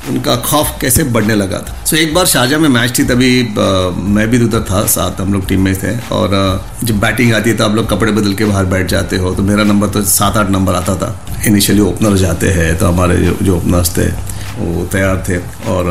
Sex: male